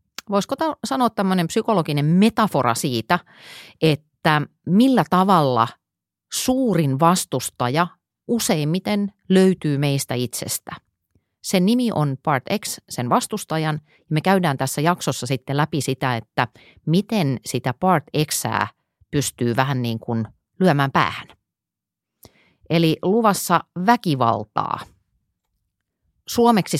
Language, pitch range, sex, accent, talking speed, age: Finnish, 130-185 Hz, female, native, 100 wpm, 30-49